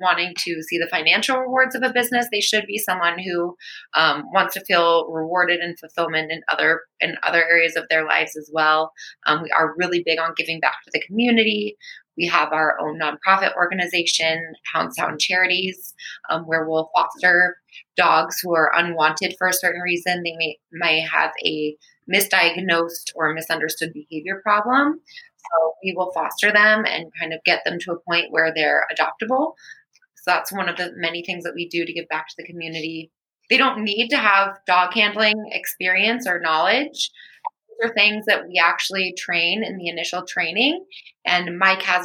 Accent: American